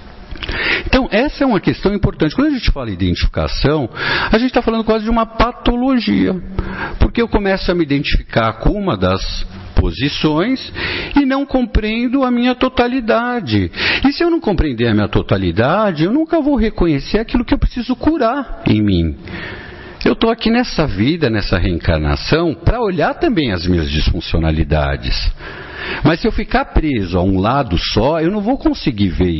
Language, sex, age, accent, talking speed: Portuguese, male, 60-79, Brazilian, 165 wpm